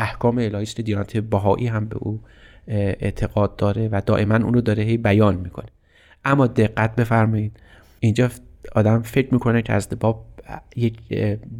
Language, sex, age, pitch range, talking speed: Persian, male, 30-49, 100-125 Hz, 135 wpm